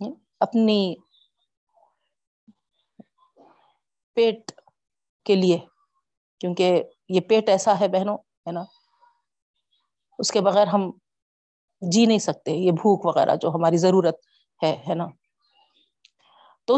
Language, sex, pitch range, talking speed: Urdu, female, 175-225 Hz, 105 wpm